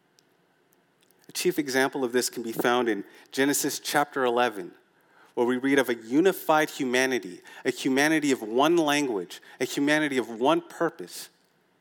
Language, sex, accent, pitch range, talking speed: English, male, American, 130-155 Hz, 140 wpm